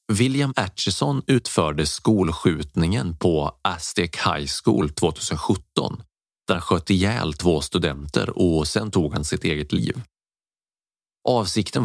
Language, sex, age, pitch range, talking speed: Swedish, male, 30-49, 80-100 Hz, 115 wpm